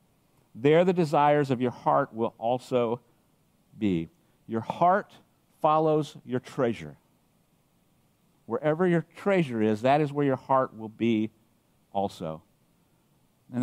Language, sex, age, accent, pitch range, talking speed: English, male, 50-69, American, 125-165 Hz, 120 wpm